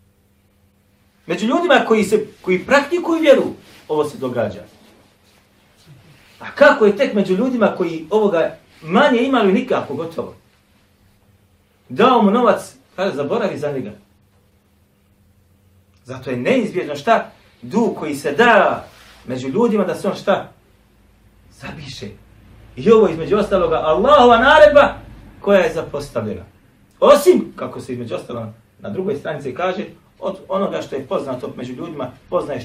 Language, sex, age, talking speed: English, male, 40-59, 125 wpm